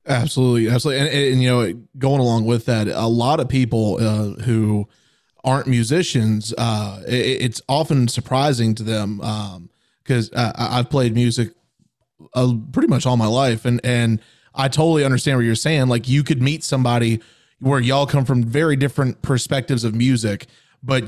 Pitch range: 115-140 Hz